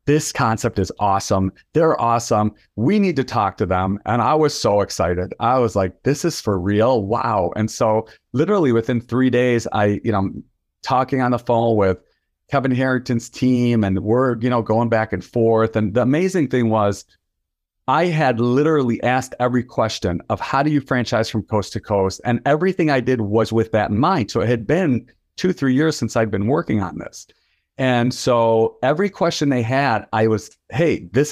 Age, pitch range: 40-59, 110-140 Hz